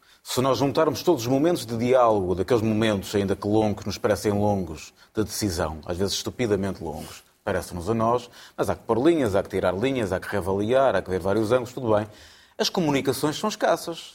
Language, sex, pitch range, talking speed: Portuguese, male, 105-130 Hz, 205 wpm